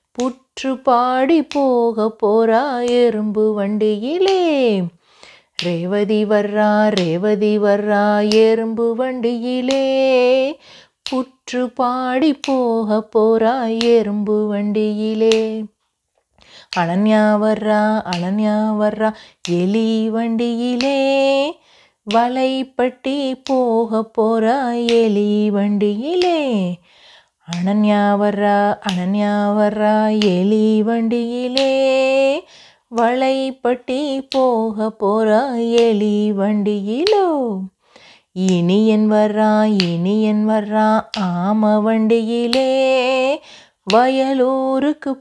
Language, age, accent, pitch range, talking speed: Tamil, 30-49, native, 210-255 Hz, 55 wpm